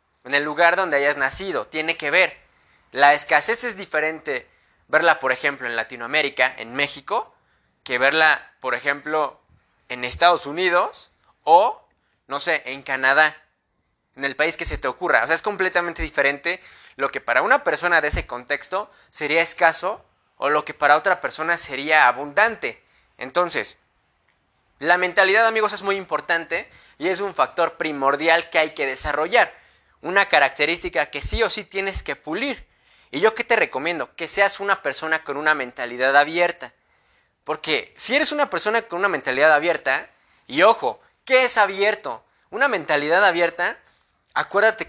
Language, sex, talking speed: English, male, 160 wpm